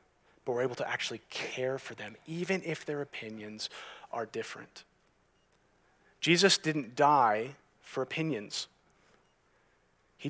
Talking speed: 115 wpm